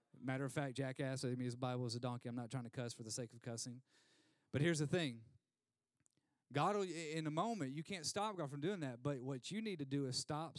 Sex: male